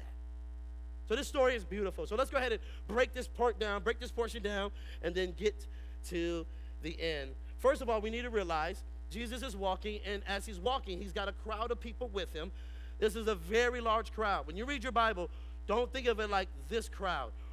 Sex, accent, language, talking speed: male, American, English, 220 wpm